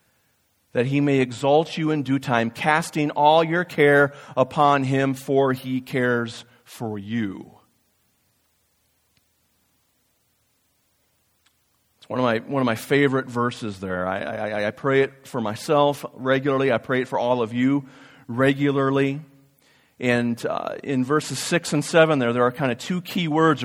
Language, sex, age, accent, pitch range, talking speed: English, male, 40-59, American, 120-155 Hz, 150 wpm